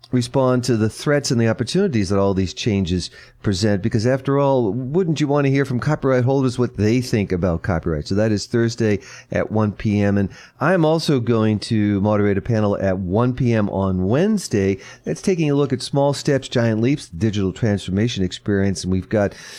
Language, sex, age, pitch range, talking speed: English, male, 40-59, 95-125 Hz, 195 wpm